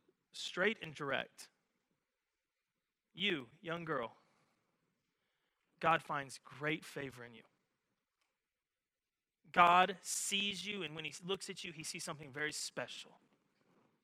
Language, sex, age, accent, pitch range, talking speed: English, male, 20-39, American, 155-230 Hz, 110 wpm